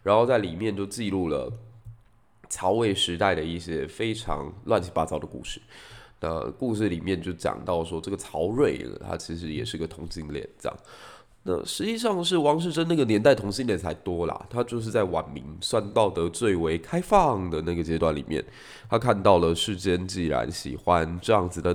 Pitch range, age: 85-115 Hz, 20-39